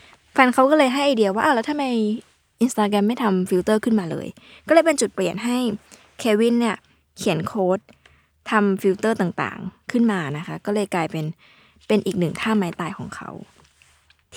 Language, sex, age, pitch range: Thai, female, 20-39, 185-235 Hz